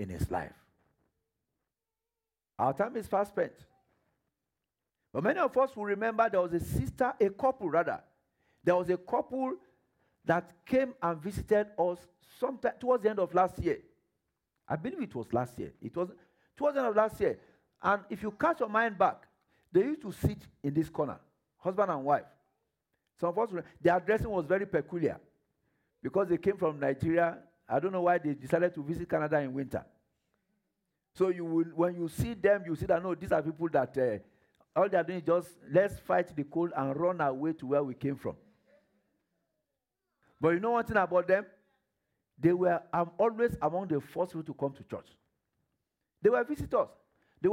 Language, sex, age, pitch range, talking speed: English, male, 50-69, 160-210 Hz, 190 wpm